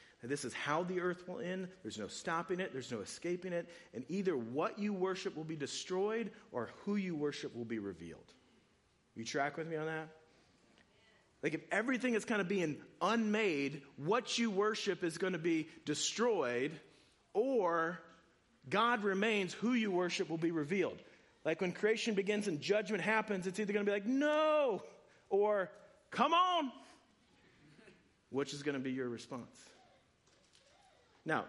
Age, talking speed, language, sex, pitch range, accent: 40-59, 165 wpm, English, male, 125-185 Hz, American